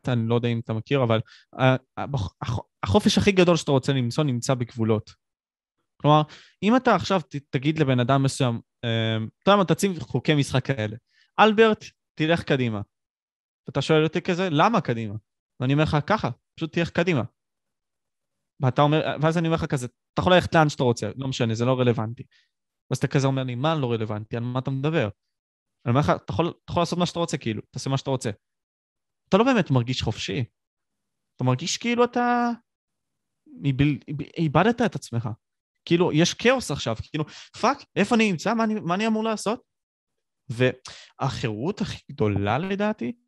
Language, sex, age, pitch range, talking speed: Hebrew, male, 20-39, 120-170 Hz, 165 wpm